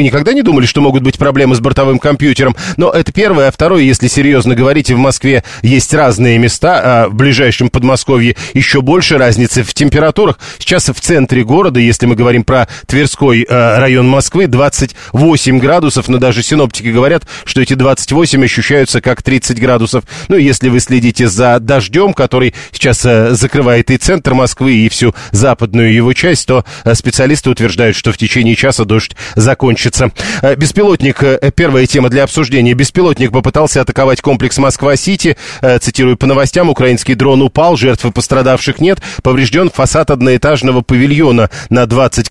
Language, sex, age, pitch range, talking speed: Russian, male, 40-59, 125-140 Hz, 155 wpm